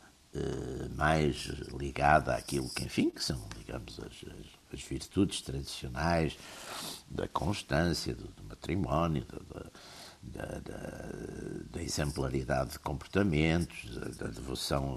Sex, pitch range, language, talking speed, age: male, 70-95 Hz, Portuguese, 110 wpm, 60-79